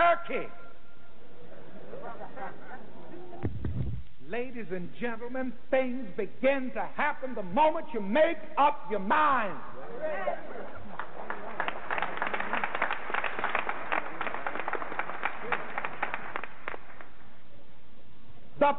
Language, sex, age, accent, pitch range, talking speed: English, male, 50-69, American, 265-315 Hz, 50 wpm